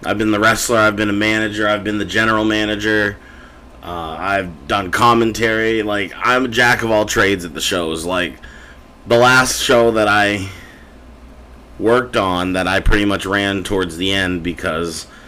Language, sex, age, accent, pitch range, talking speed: English, male, 30-49, American, 85-115 Hz, 175 wpm